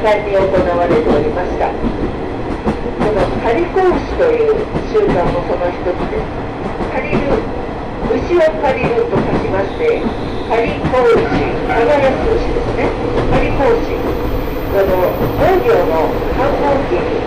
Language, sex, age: Japanese, female, 50-69